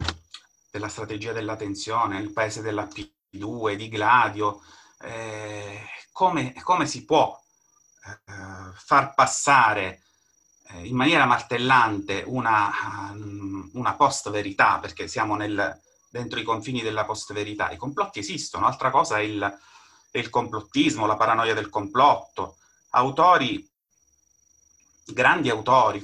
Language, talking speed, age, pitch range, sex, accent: Italian, 110 wpm, 30-49, 100-130 Hz, male, native